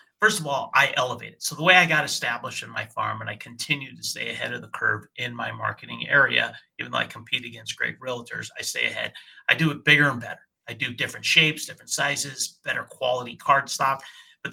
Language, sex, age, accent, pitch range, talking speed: English, male, 30-49, American, 125-165 Hz, 225 wpm